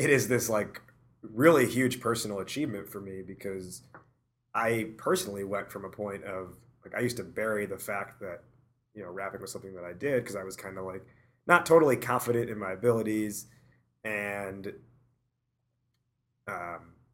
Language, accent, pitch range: English, American, 100-125 Hz